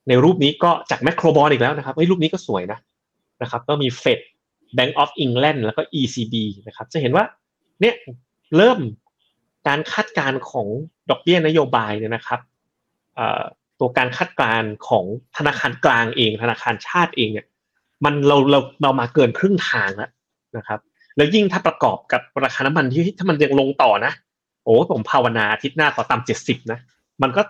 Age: 30-49